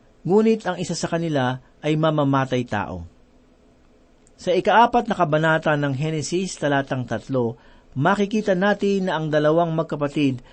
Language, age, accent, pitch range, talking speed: Filipino, 40-59, native, 145-190 Hz, 125 wpm